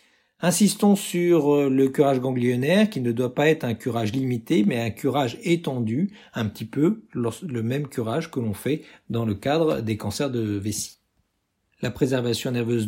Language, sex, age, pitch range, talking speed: French, male, 50-69, 115-155 Hz, 170 wpm